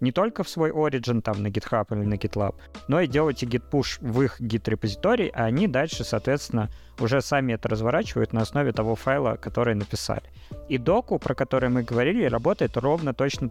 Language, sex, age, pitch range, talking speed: Russian, male, 20-39, 110-130 Hz, 190 wpm